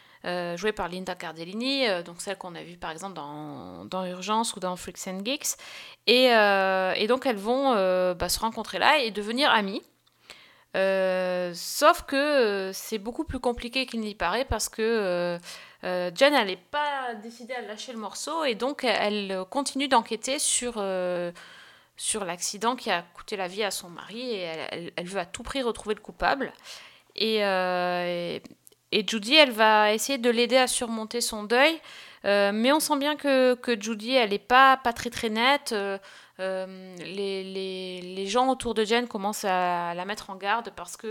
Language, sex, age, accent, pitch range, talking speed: French, female, 30-49, French, 185-240 Hz, 190 wpm